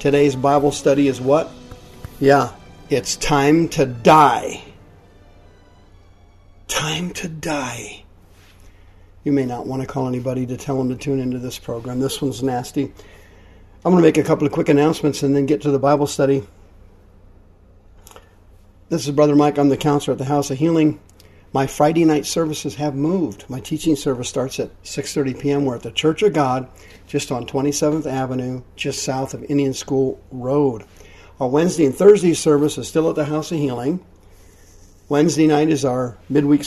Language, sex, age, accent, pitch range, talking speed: English, male, 50-69, American, 100-150 Hz, 170 wpm